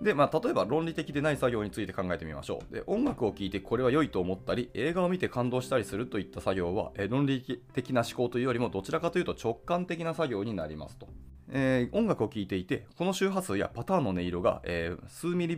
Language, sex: Japanese, male